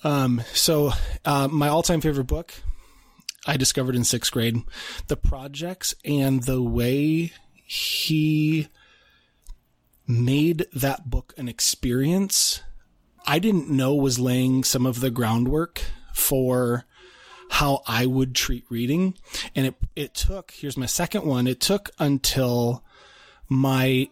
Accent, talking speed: American, 125 wpm